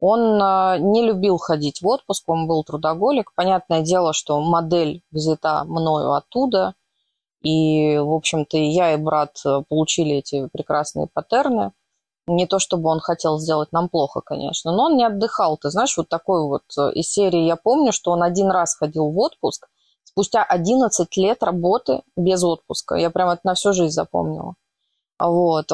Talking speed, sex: 165 wpm, female